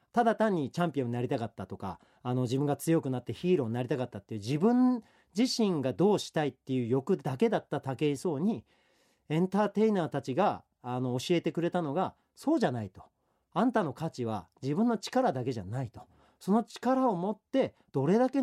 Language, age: Japanese, 40-59